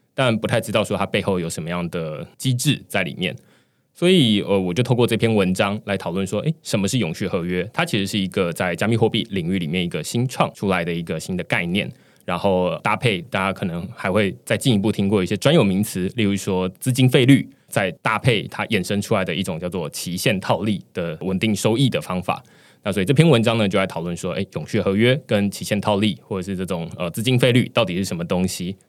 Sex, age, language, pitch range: male, 20-39, Chinese, 95-130 Hz